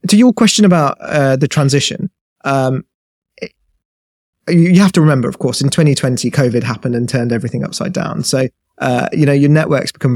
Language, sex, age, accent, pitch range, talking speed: English, male, 30-49, British, 130-145 Hz, 185 wpm